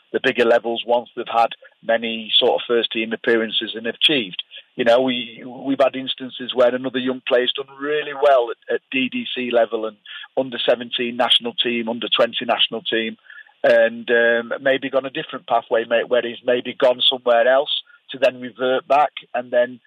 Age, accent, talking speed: 40-59, British, 185 wpm